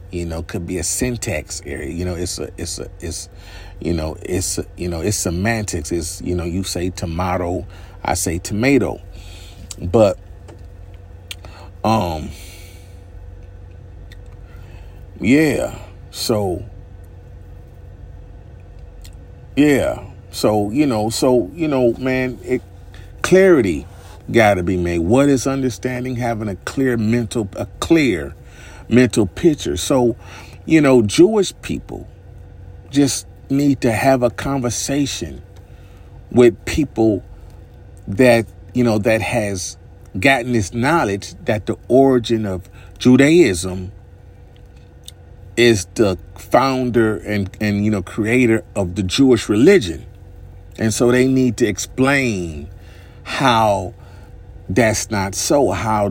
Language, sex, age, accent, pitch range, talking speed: English, male, 40-59, American, 90-115 Hz, 115 wpm